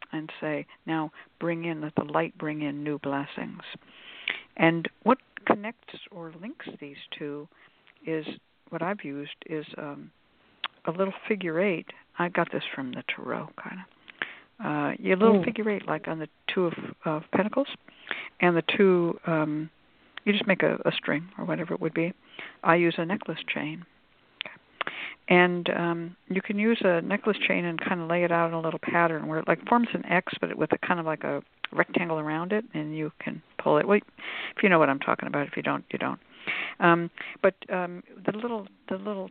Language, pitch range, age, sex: English, 155-200 Hz, 60-79, female